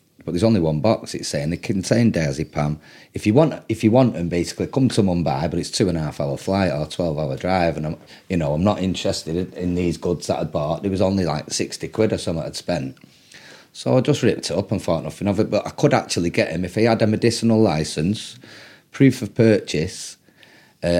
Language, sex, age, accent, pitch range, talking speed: English, male, 30-49, British, 80-110 Hz, 215 wpm